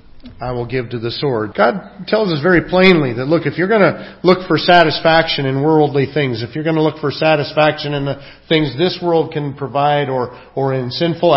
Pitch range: 140-175 Hz